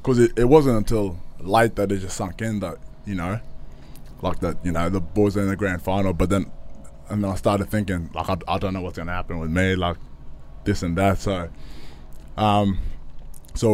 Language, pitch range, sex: English, 85-100 Hz, male